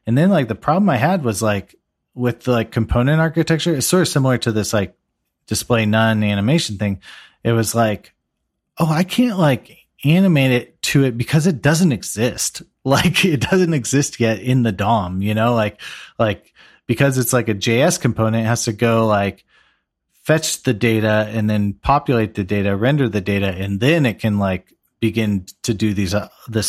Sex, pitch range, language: male, 105-130 Hz, English